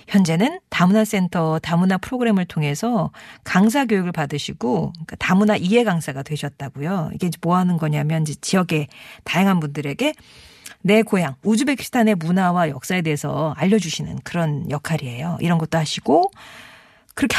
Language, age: Korean, 40-59